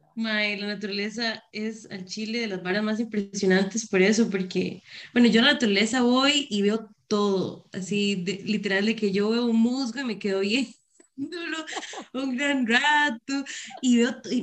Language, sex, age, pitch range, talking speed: Spanish, female, 20-39, 215-265 Hz, 175 wpm